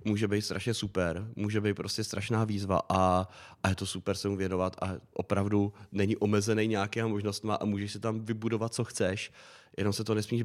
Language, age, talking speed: Czech, 30-49, 195 wpm